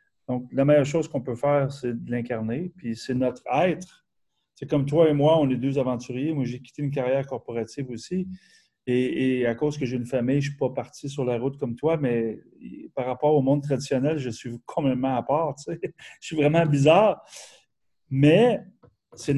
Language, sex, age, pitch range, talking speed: English, male, 30-49, 130-170 Hz, 200 wpm